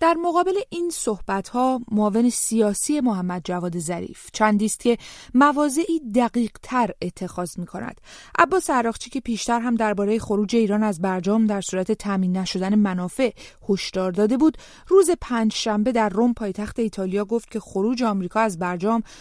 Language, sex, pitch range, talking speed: English, female, 195-250 Hz, 150 wpm